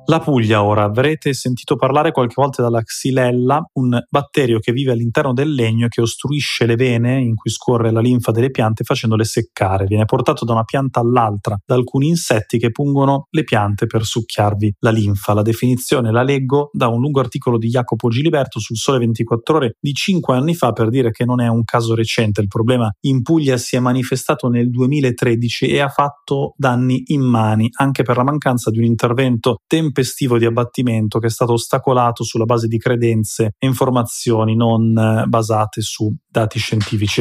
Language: Italian